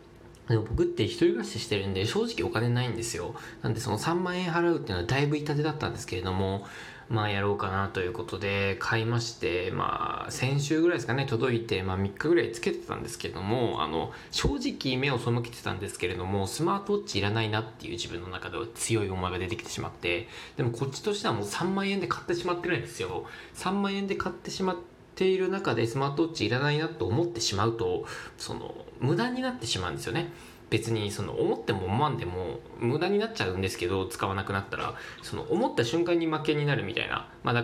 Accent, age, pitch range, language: native, 20-39, 110-165 Hz, Japanese